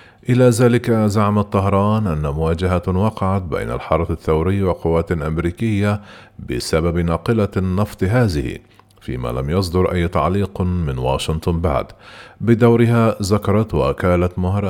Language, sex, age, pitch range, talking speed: Arabic, male, 40-59, 85-105 Hz, 115 wpm